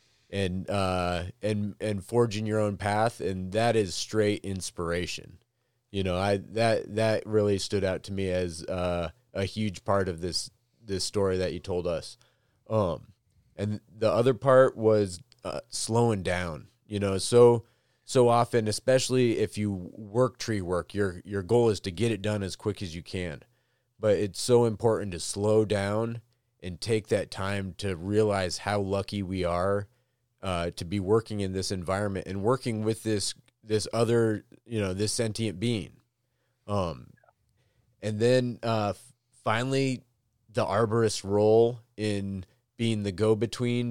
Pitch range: 95-115 Hz